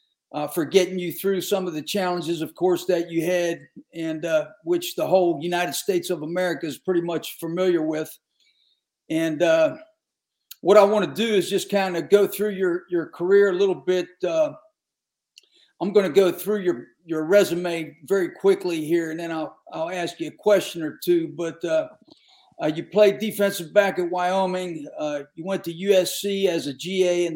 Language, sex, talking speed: English, male, 190 wpm